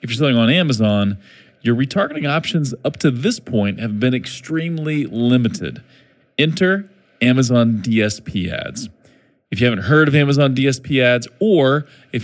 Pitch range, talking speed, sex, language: 115-160 Hz, 145 wpm, male, English